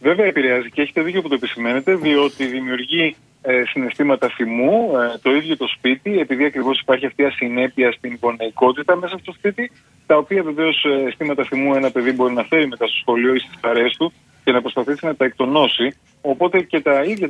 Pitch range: 130-165 Hz